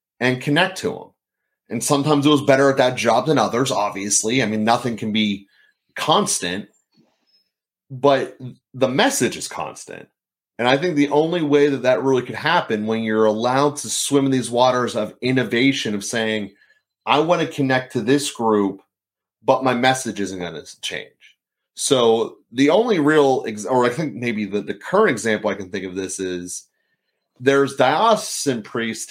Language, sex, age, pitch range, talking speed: English, male, 30-49, 105-140 Hz, 175 wpm